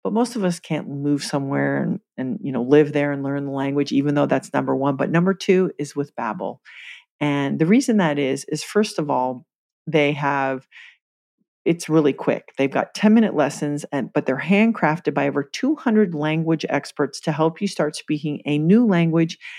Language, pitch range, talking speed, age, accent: English, 145-195 Hz, 195 wpm, 40-59, American